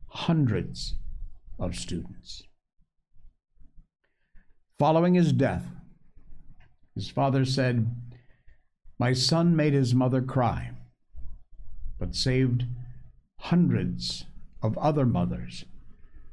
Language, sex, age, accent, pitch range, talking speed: English, male, 60-79, American, 80-115 Hz, 75 wpm